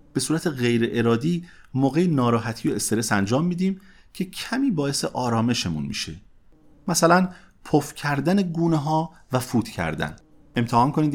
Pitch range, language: 115-165 Hz, Persian